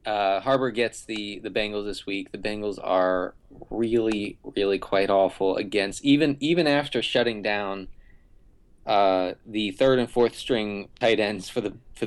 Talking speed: 160 wpm